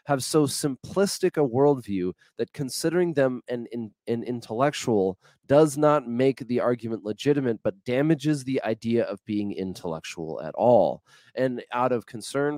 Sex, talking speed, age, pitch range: male, 145 wpm, 30-49, 110-145 Hz